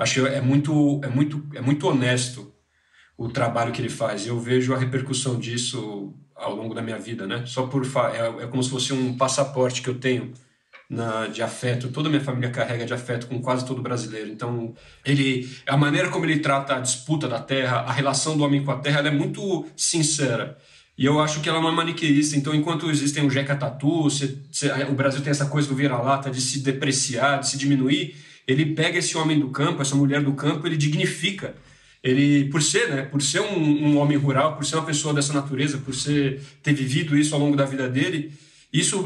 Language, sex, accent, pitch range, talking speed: Portuguese, male, Brazilian, 130-150 Hz, 220 wpm